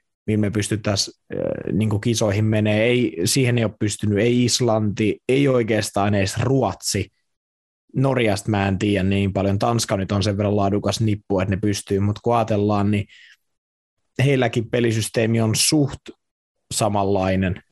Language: Finnish